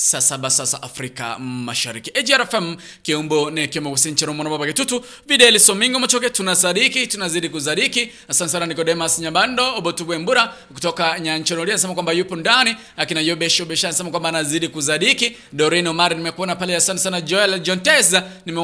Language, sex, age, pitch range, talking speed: English, male, 20-39, 145-185 Hz, 150 wpm